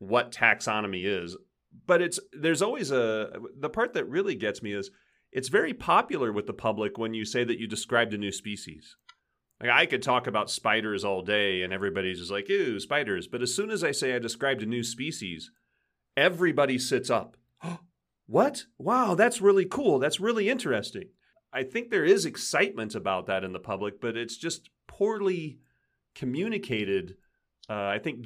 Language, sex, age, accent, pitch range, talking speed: English, male, 40-59, American, 100-145 Hz, 180 wpm